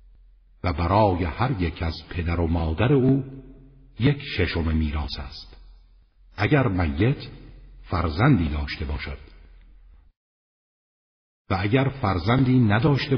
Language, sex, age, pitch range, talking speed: Persian, male, 50-69, 80-110 Hz, 100 wpm